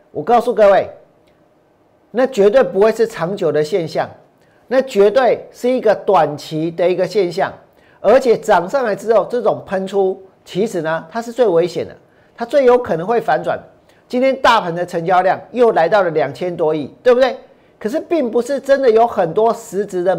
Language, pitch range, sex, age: Chinese, 190-250 Hz, male, 40-59